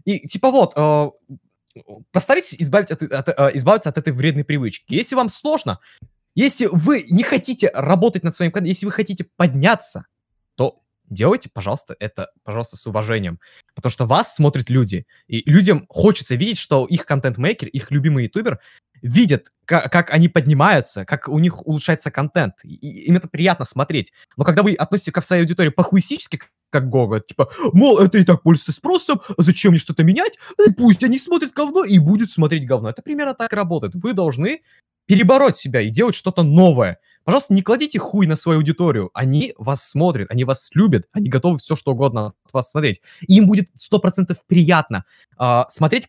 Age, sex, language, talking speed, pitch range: 20-39, male, Russian, 170 wpm, 140-185 Hz